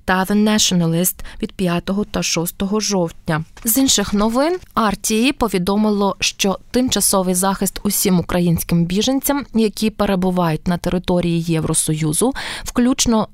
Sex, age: female, 20-39